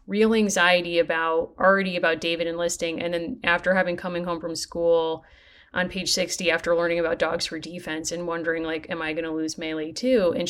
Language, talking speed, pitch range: English, 200 wpm, 165-195 Hz